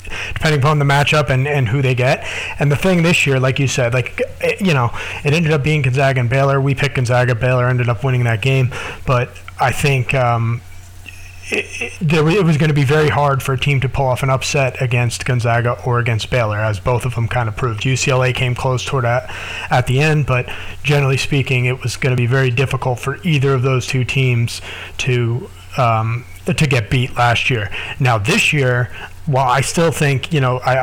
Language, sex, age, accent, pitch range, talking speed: English, male, 30-49, American, 120-135 Hz, 210 wpm